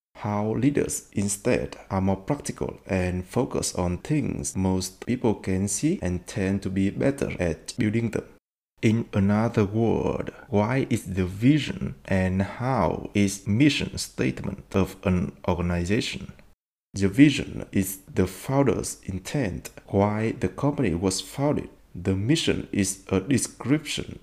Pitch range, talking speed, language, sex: 95-120 Hz, 130 wpm, Vietnamese, male